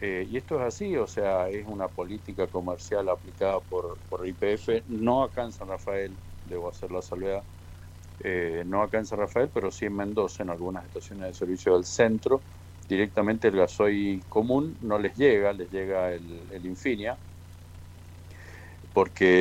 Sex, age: male, 50-69